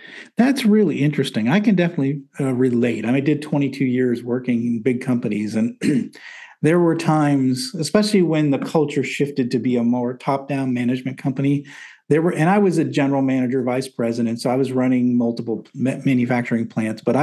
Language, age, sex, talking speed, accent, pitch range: English, 50-69, male, 185 wpm, American, 120-150 Hz